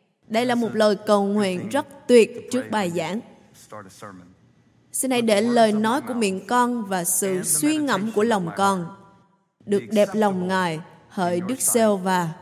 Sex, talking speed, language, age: female, 165 wpm, Vietnamese, 20-39